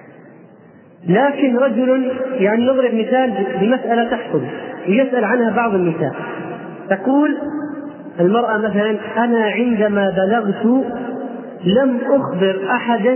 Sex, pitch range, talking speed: male, 190-245 Hz, 90 wpm